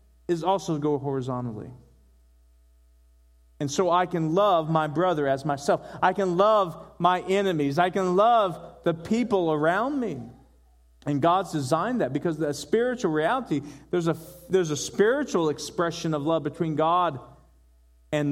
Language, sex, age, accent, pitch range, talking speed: English, male, 40-59, American, 155-230 Hz, 145 wpm